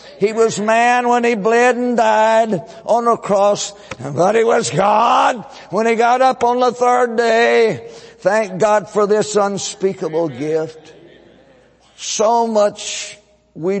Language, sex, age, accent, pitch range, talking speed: English, male, 60-79, American, 170-225 Hz, 140 wpm